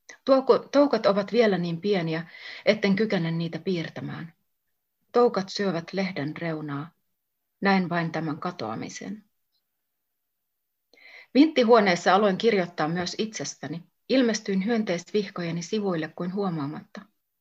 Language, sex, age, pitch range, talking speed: Finnish, female, 30-49, 165-215 Hz, 95 wpm